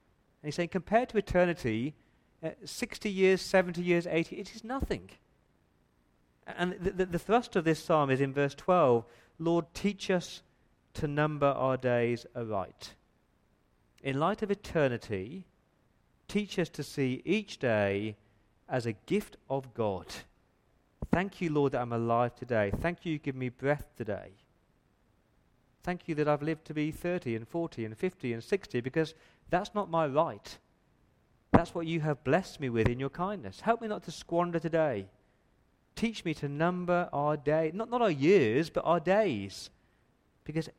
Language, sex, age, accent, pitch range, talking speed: English, male, 40-59, British, 115-175 Hz, 165 wpm